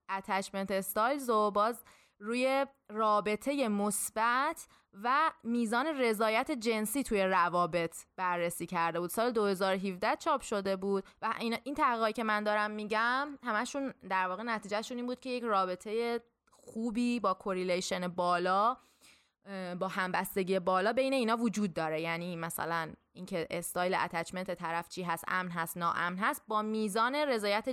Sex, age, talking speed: female, 20-39, 135 wpm